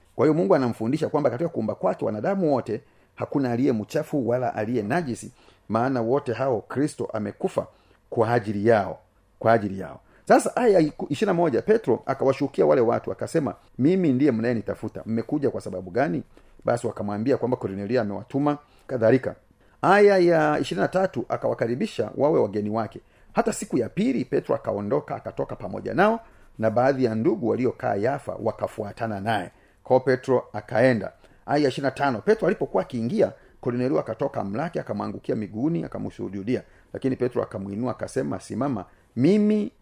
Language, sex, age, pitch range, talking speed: Swahili, male, 40-59, 110-155 Hz, 140 wpm